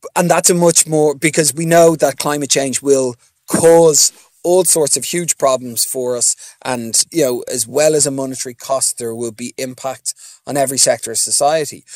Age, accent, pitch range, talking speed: 30-49, Irish, 125-150 Hz, 190 wpm